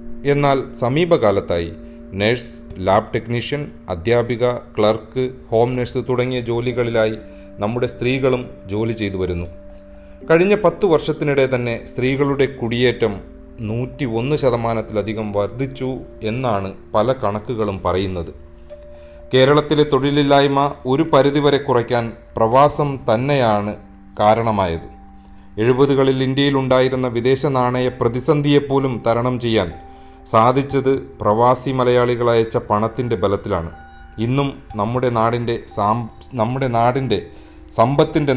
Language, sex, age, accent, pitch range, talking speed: Malayalam, male, 30-49, native, 105-130 Hz, 90 wpm